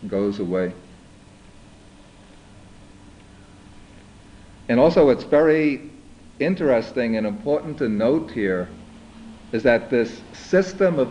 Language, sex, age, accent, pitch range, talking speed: English, male, 50-69, American, 100-115 Hz, 90 wpm